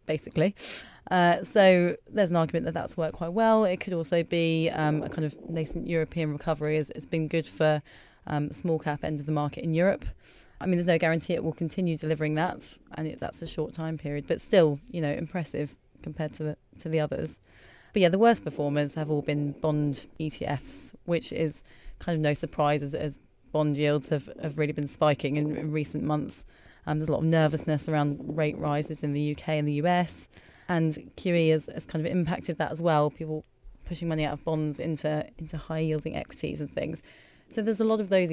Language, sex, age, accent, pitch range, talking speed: English, female, 30-49, British, 150-170 Hz, 210 wpm